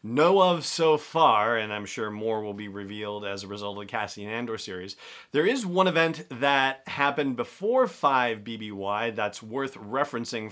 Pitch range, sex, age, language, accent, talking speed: 105-145 Hz, male, 40-59, English, American, 175 wpm